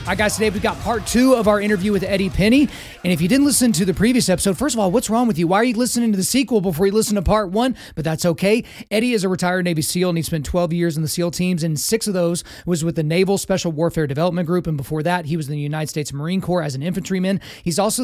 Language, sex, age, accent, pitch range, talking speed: English, male, 30-49, American, 165-205 Hz, 295 wpm